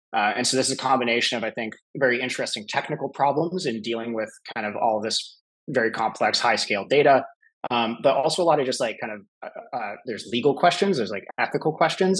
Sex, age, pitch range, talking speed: male, 20-39, 115-130 Hz, 220 wpm